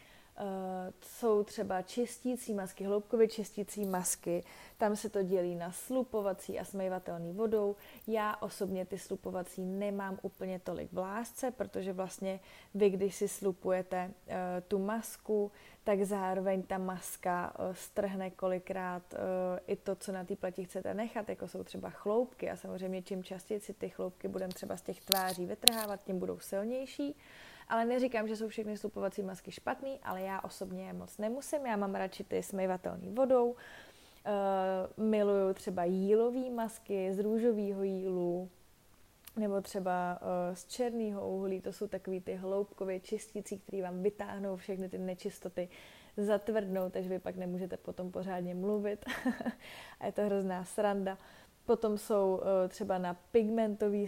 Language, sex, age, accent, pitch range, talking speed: Czech, female, 20-39, native, 185-210 Hz, 150 wpm